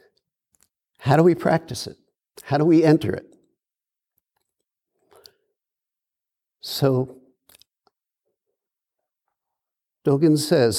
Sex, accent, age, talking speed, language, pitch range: male, American, 60-79, 70 wpm, English, 130-175 Hz